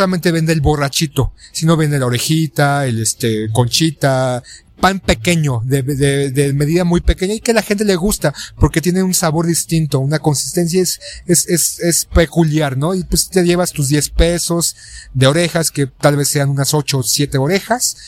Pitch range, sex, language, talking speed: 130-165 Hz, male, Spanish, 195 wpm